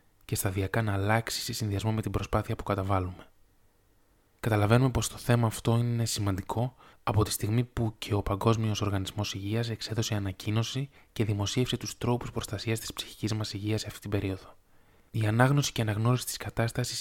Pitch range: 100-115 Hz